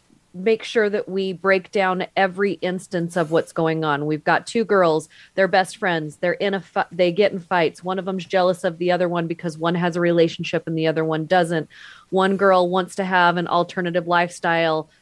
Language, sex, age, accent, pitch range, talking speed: English, female, 30-49, American, 170-200 Hz, 210 wpm